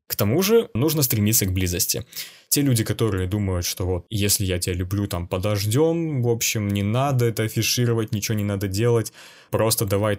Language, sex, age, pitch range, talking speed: Russian, male, 20-39, 100-125 Hz, 185 wpm